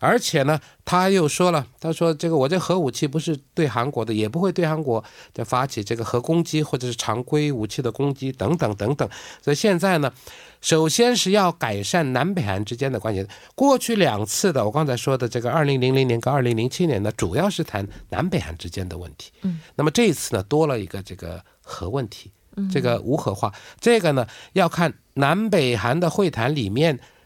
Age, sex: 50-69, male